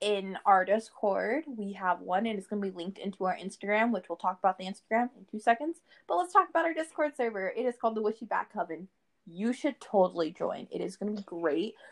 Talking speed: 240 wpm